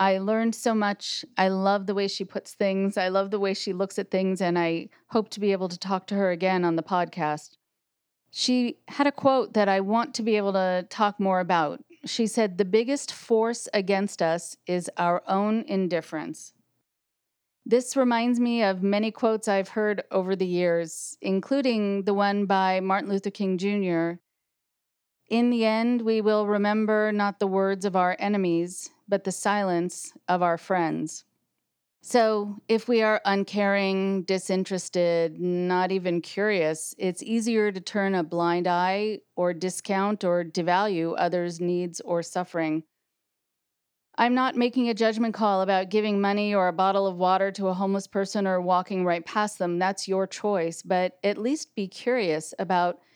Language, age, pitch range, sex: English, 40-59, 180-210 Hz, female